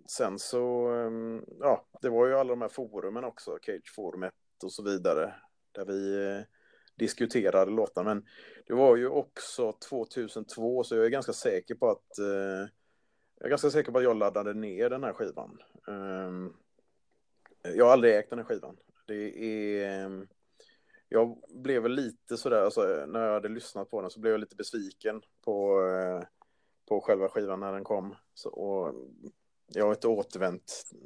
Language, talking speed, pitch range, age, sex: Swedish, 160 wpm, 100-130 Hz, 30-49, male